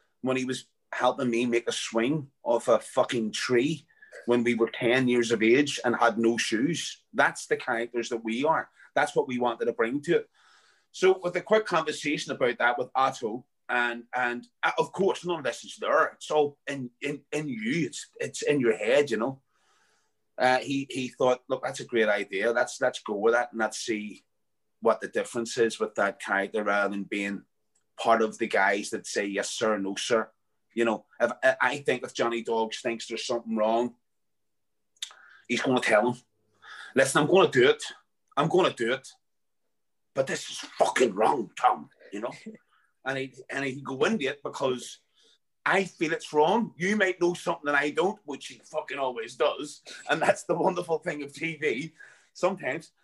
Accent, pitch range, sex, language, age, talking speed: British, 115-165 Hz, male, English, 30-49, 190 wpm